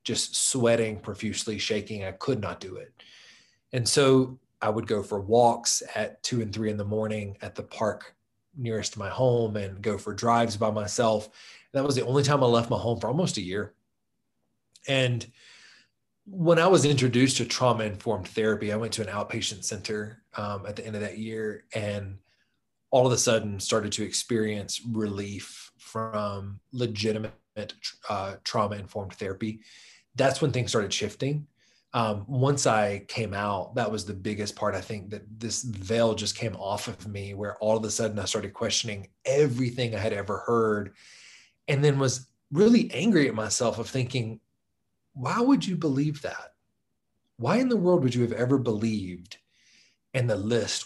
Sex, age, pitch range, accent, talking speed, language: male, 20-39, 105-125 Hz, American, 180 wpm, English